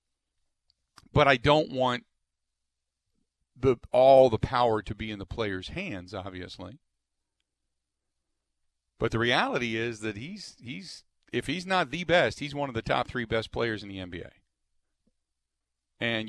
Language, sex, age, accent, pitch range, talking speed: English, male, 40-59, American, 90-130 Hz, 145 wpm